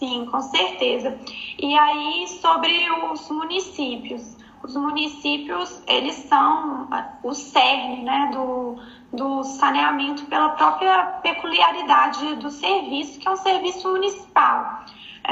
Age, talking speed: 20-39, 110 wpm